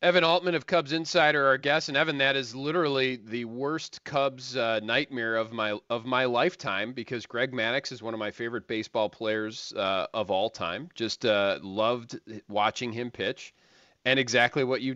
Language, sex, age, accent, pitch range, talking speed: English, male, 40-59, American, 105-135 Hz, 185 wpm